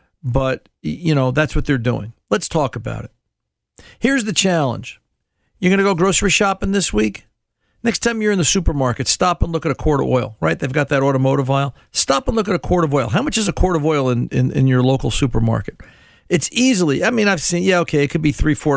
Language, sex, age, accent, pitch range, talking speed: English, male, 50-69, American, 125-175 Hz, 240 wpm